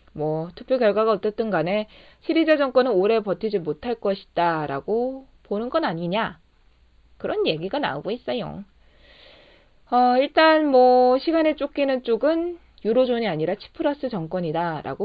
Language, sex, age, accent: Korean, female, 20-39, native